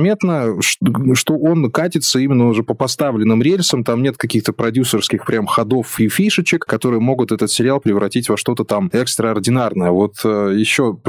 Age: 20-39